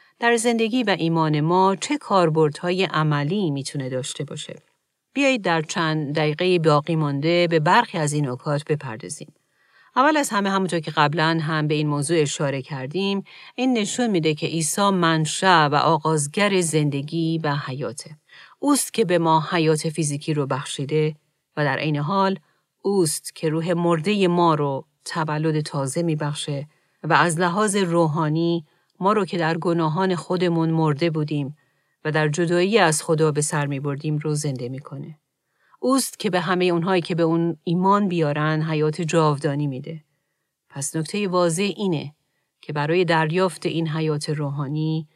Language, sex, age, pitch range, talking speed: Persian, female, 40-59, 150-180 Hz, 155 wpm